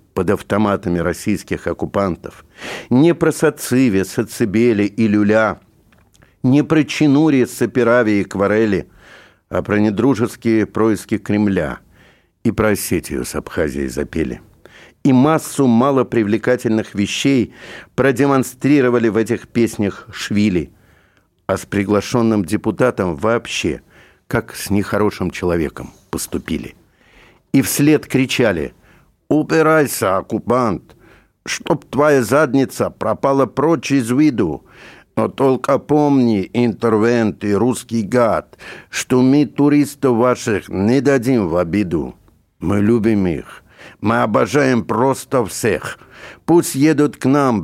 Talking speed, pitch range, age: 105 wpm, 105-135 Hz, 60-79